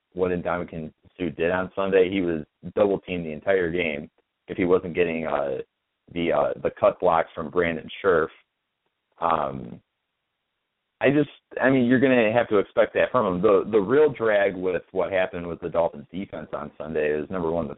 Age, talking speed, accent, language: 30-49, 190 wpm, American, English